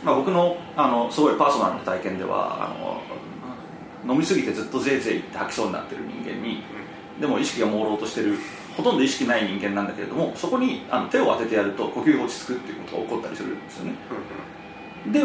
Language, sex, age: Japanese, male, 30-49